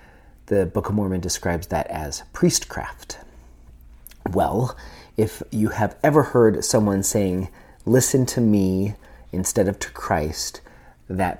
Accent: American